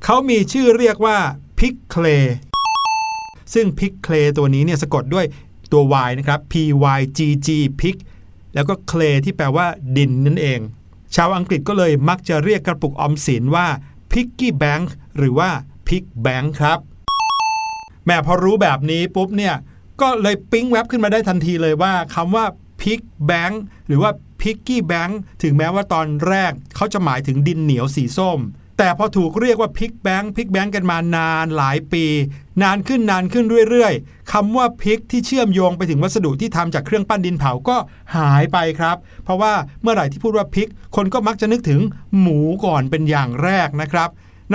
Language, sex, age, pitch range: Thai, male, 60-79, 150-205 Hz